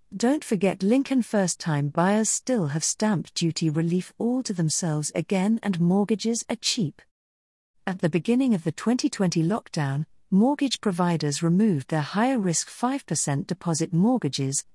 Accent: British